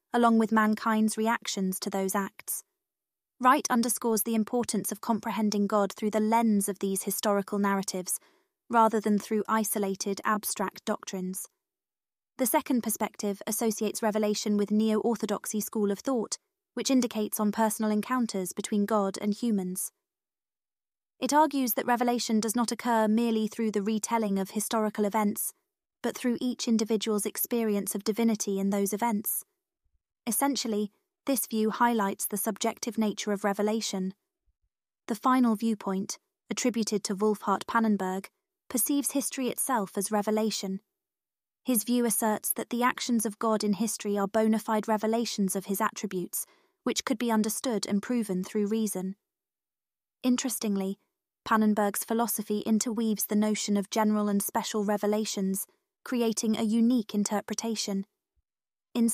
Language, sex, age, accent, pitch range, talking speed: English, female, 20-39, British, 205-235 Hz, 135 wpm